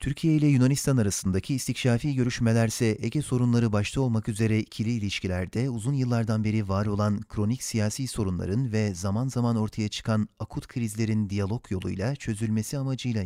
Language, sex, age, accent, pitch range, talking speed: Turkish, male, 40-59, native, 105-125 Hz, 145 wpm